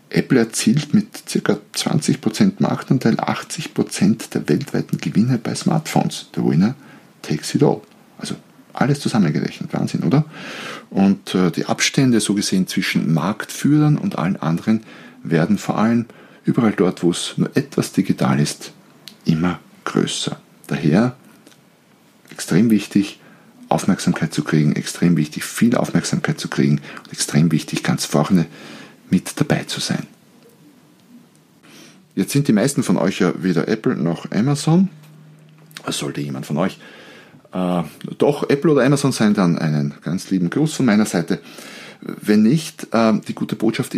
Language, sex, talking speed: German, male, 140 wpm